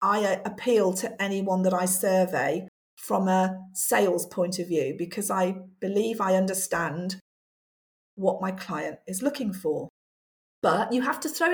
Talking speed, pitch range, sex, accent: 150 wpm, 205-315 Hz, female, British